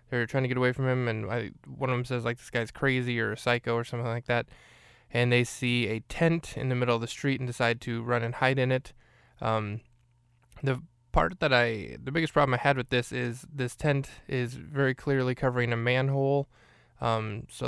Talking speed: 225 wpm